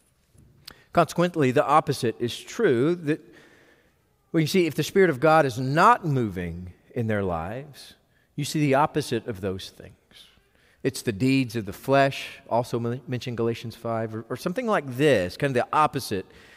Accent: American